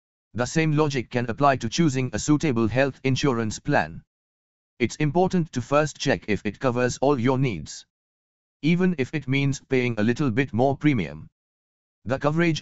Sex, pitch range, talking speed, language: male, 105-140 Hz, 165 wpm, English